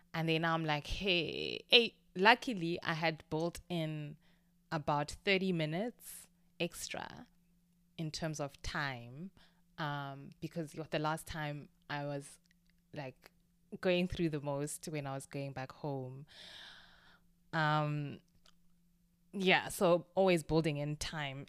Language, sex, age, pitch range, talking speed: English, female, 20-39, 150-190 Hz, 125 wpm